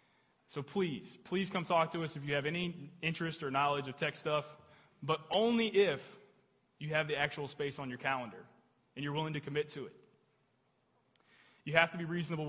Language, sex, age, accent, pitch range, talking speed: English, male, 20-39, American, 145-185 Hz, 190 wpm